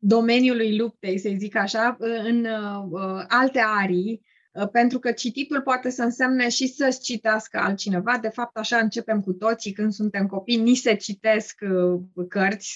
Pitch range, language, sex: 210-250 Hz, Romanian, female